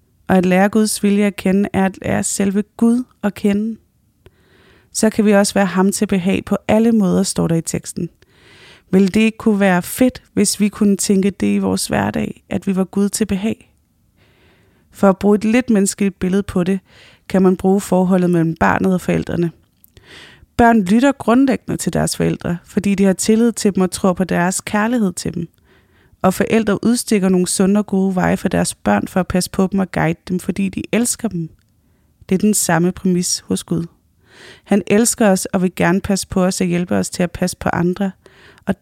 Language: English